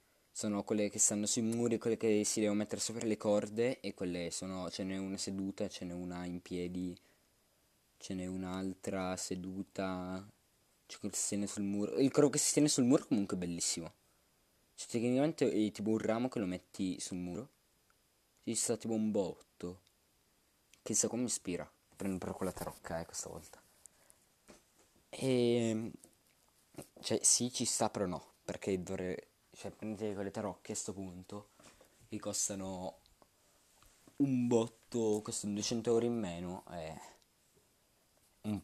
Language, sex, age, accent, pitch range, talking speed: Italian, male, 20-39, native, 90-110 Hz, 160 wpm